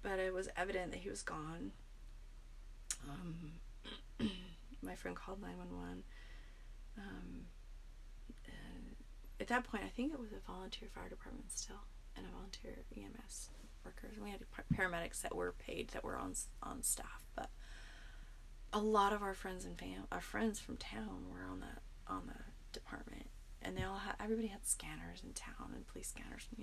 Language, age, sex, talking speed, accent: English, 30-49, female, 175 wpm, American